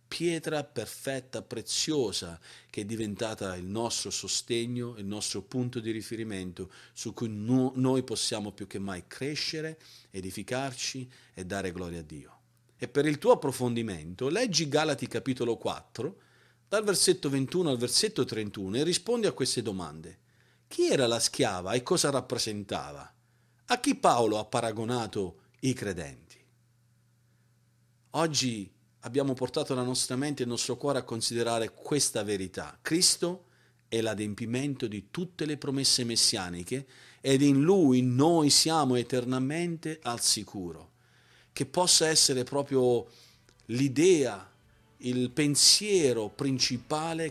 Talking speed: 125 wpm